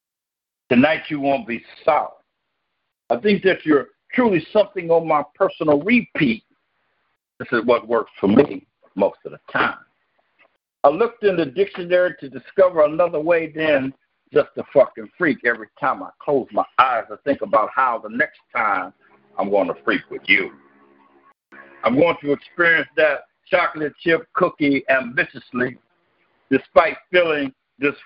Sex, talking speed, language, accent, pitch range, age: male, 150 wpm, English, American, 140-180 Hz, 60-79